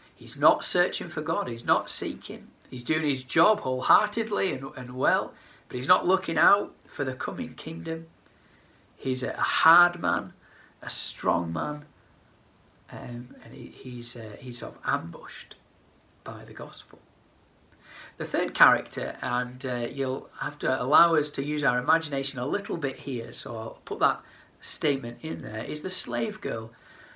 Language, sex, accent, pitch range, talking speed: English, male, British, 115-140 Hz, 160 wpm